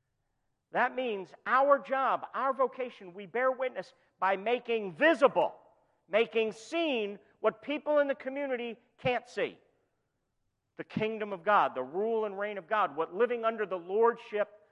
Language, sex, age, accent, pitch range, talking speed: English, male, 50-69, American, 170-260 Hz, 145 wpm